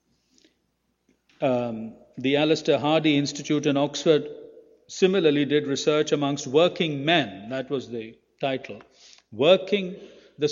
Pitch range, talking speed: 135-185 Hz, 105 wpm